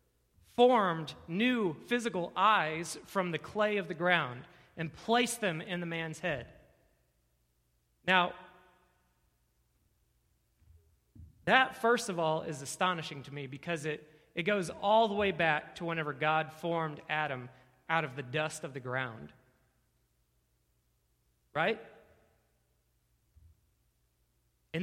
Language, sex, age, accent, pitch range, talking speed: English, male, 30-49, American, 140-190 Hz, 115 wpm